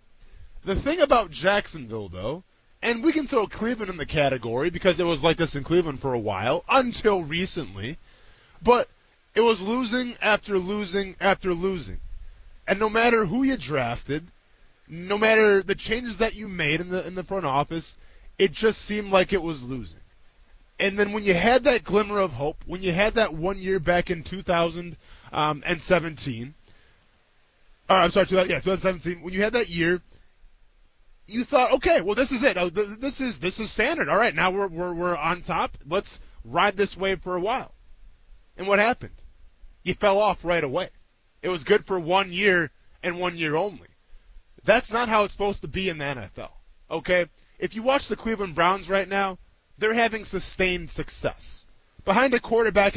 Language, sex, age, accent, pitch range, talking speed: English, male, 20-39, American, 150-205 Hz, 180 wpm